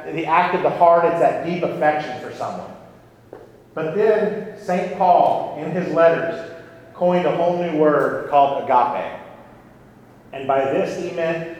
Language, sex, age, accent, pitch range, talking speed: English, male, 40-59, American, 145-180 Hz, 155 wpm